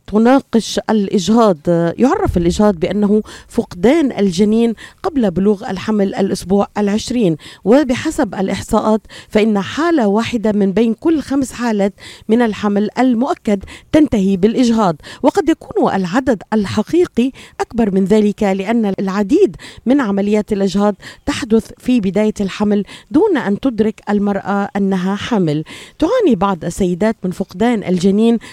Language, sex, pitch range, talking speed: Arabic, female, 200-240 Hz, 115 wpm